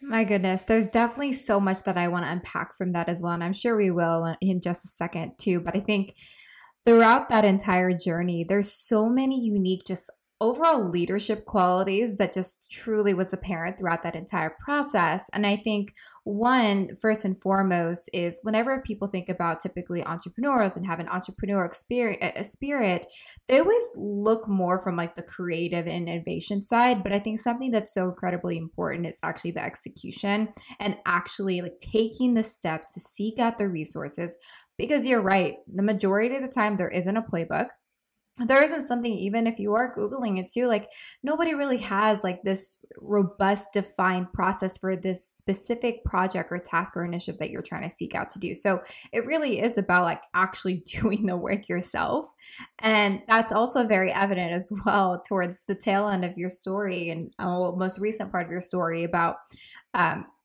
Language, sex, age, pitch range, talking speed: English, female, 20-39, 180-220 Hz, 185 wpm